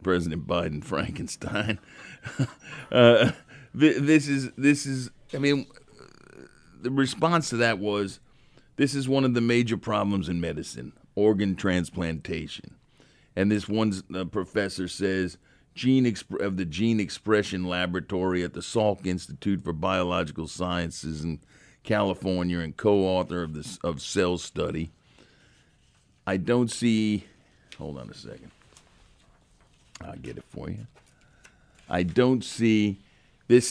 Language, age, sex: English, 50-69, male